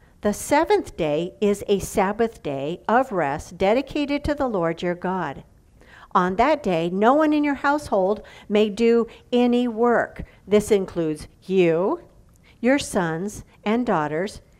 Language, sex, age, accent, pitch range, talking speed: English, female, 50-69, American, 170-230 Hz, 140 wpm